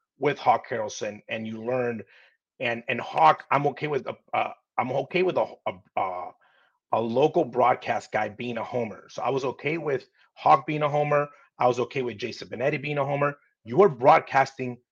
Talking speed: 195 wpm